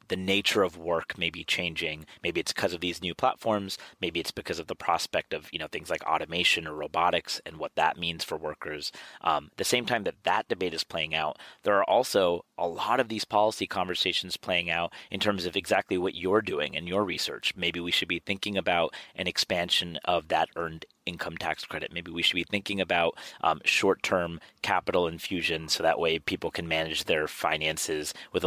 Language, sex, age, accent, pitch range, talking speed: English, male, 30-49, American, 85-100 Hz, 205 wpm